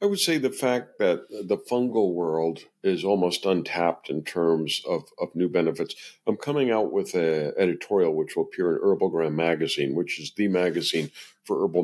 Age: 50-69